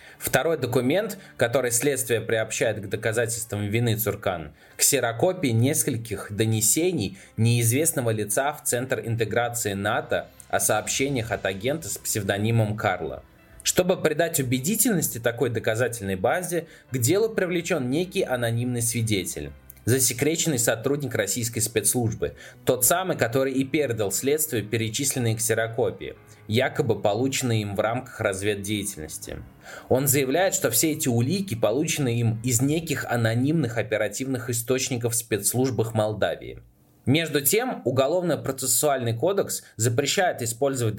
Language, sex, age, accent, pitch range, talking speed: Russian, male, 20-39, native, 110-140 Hz, 115 wpm